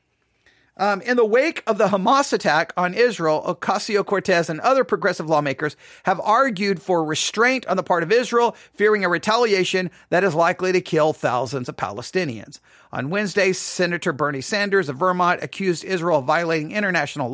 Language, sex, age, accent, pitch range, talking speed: English, male, 40-59, American, 165-220 Hz, 165 wpm